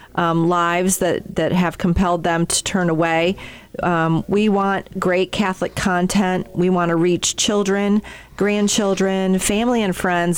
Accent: American